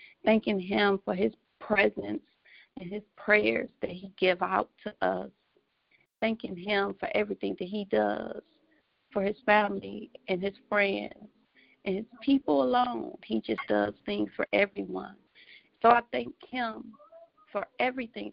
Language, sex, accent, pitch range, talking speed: English, female, American, 195-250 Hz, 140 wpm